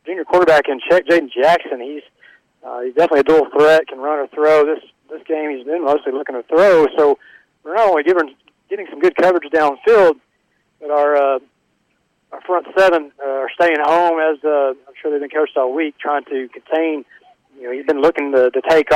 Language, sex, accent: English, male, American